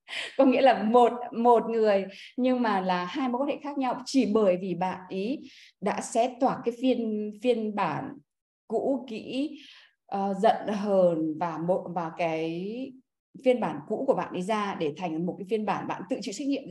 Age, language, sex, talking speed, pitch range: 20-39, Vietnamese, female, 195 wpm, 190-250 Hz